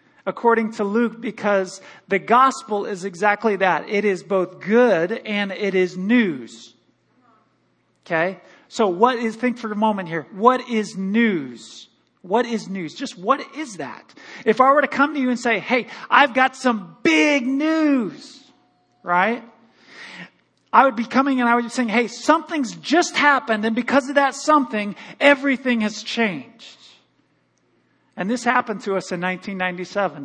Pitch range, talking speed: 195-260 Hz, 160 wpm